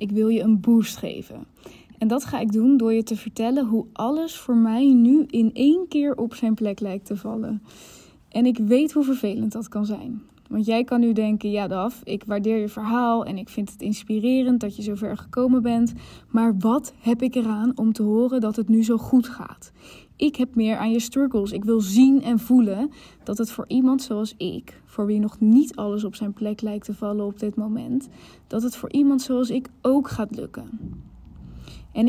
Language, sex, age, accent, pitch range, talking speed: Dutch, female, 10-29, Dutch, 215-250 Hz, 210 wpm